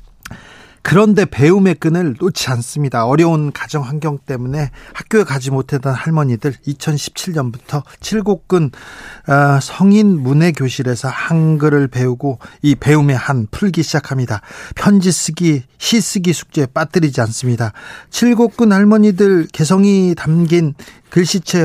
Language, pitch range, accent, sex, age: Korean, 135-185 Hz, native, male, 40-59